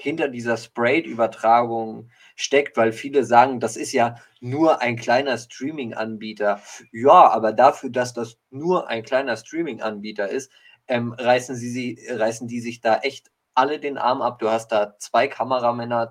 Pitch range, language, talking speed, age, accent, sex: 115-130 Hz, German, 150 wpm, 20-39, German, male